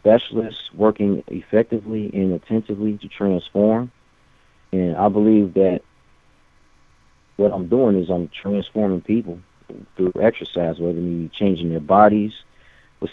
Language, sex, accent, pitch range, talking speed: English, male, American, 90-100 Hz, 125 wpm